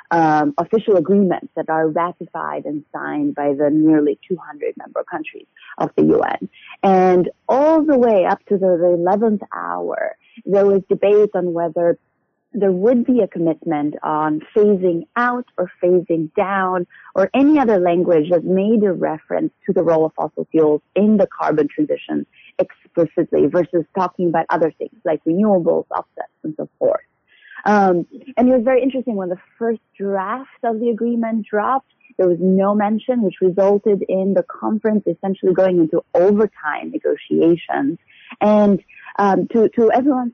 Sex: female